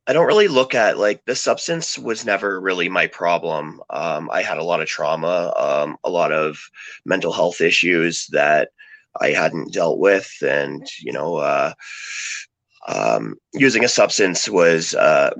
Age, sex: 30-49, male